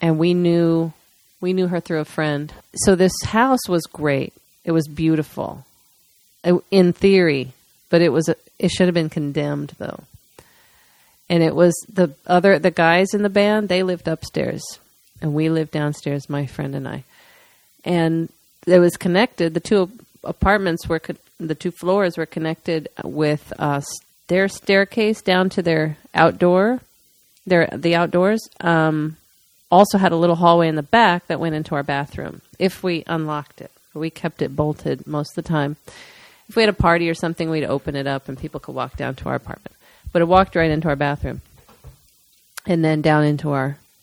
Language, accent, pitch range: English, American, 150-180 Hz